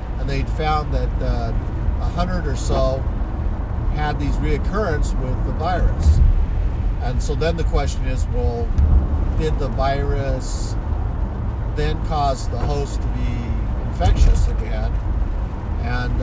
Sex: male